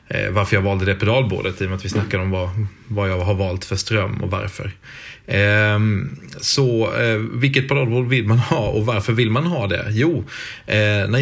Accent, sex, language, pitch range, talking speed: Swedish, male, English, 100-120 Hz, 180 wpm